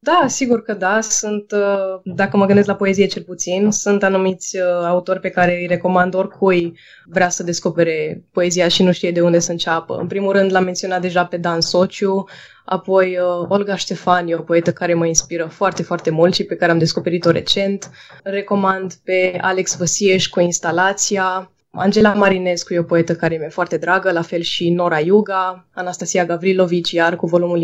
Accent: native